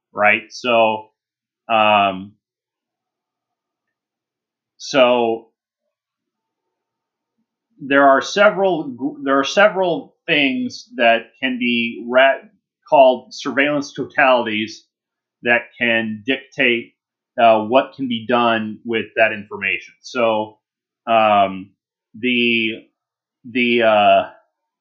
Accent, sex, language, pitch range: American, male, English, 115-150 Hz